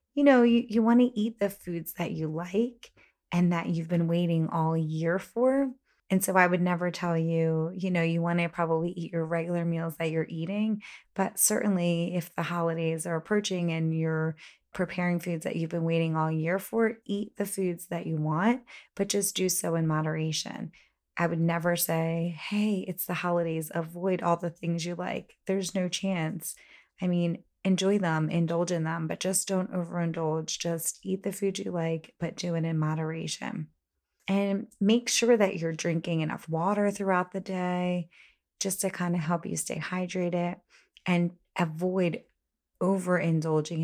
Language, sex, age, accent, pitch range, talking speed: English, female, 20-39, American, 165-190 Hz, 180 wpm